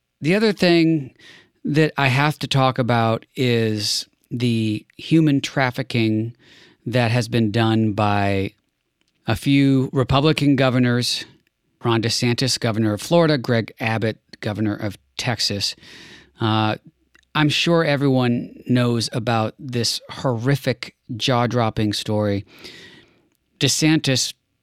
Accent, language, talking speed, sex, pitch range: American, English, 105 wpm, male, 110-135 Hz